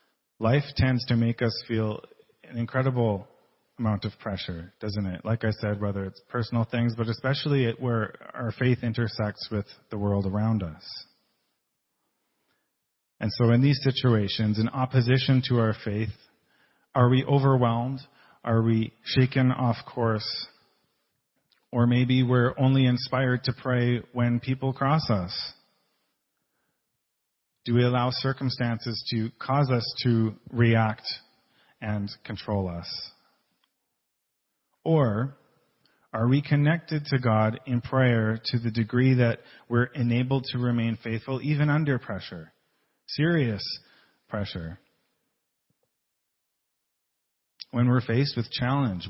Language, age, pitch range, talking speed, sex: English, 40-59, 110-130 Hz, 120 wpm, male